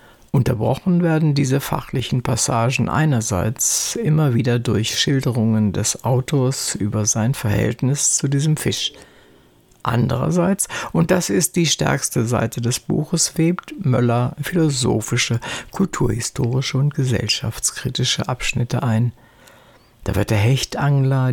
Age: 60-79